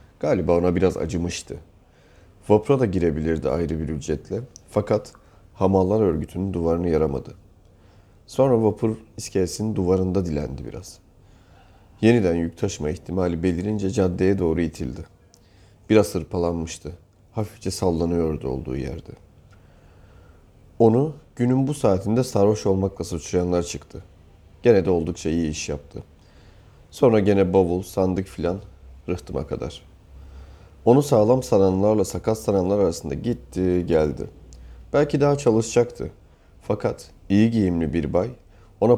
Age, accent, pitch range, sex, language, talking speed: 40-59, native, 85-100 Hz, male, Turkish, 110 wpm